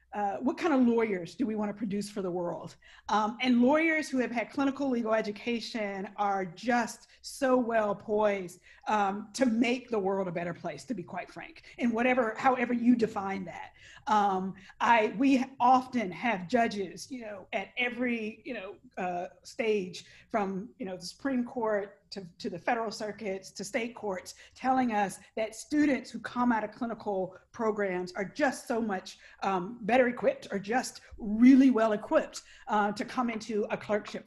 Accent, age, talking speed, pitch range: American, 40-59, 175 wpm, 205-265 Hz